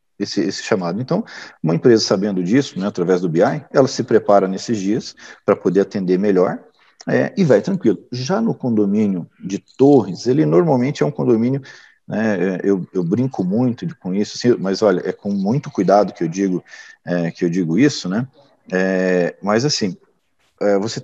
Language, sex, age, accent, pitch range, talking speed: Portuguese, male, 50-69, Brazilian, 100-135 Hz, 160 wpm